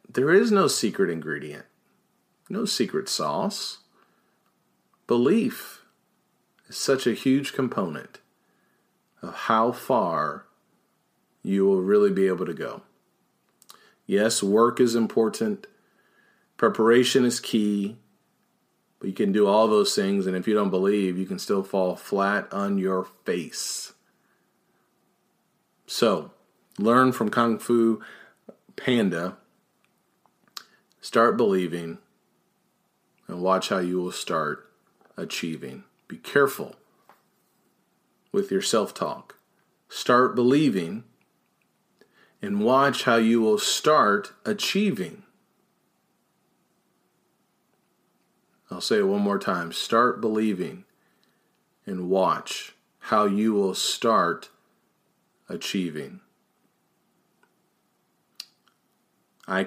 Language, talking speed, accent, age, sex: English, 95 wpm, American, 40-59, male